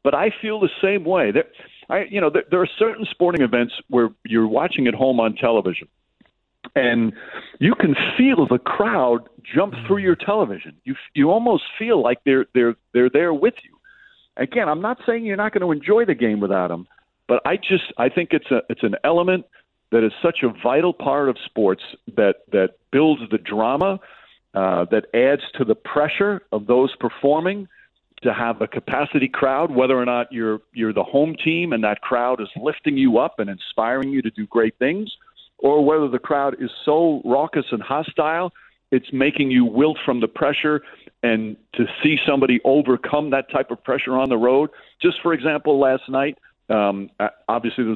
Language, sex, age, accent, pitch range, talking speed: English, male, 50-69, American, 115-165 Hz, 190 wpm